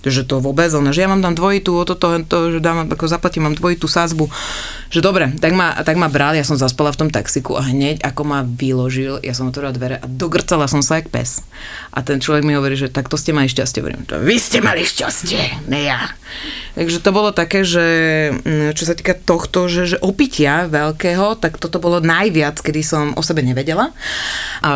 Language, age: Slovak, 30-49